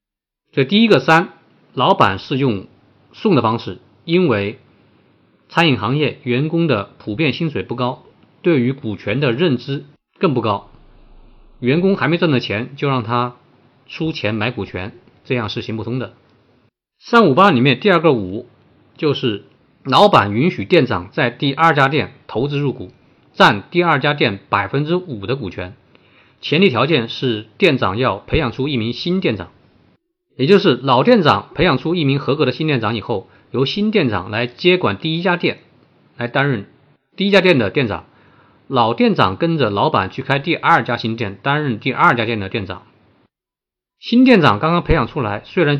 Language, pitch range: Chinese, 115-160 Hz